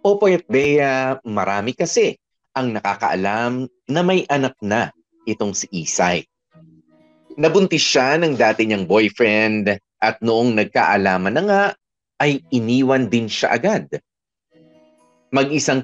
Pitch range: 100-135 Hz